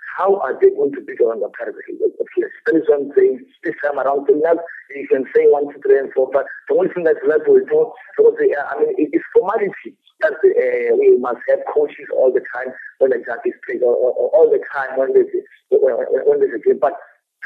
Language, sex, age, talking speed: English, male, 50-69, 235 wpm